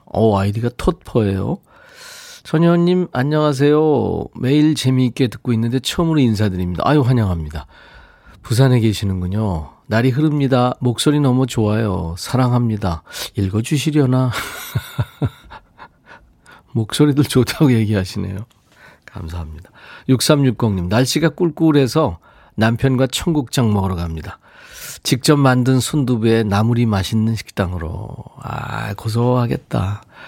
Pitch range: 105-140 Hz